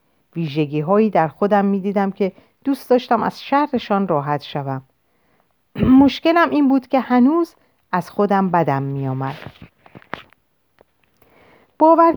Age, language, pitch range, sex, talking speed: 50-69, Persian, 160-240 Hz, female, 110 wpm